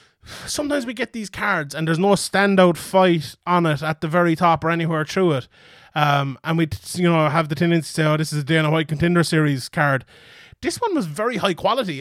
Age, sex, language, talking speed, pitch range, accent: 20-39, male, English, 225 wpm, 155-185 Hz, Irish